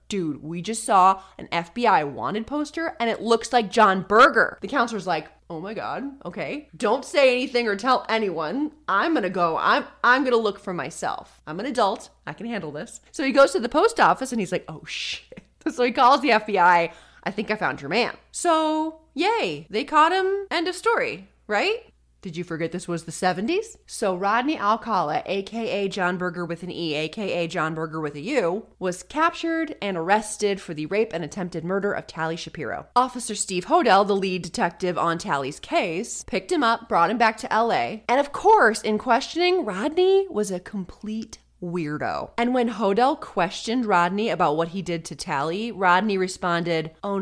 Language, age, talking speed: English, 20-39, 190 wpm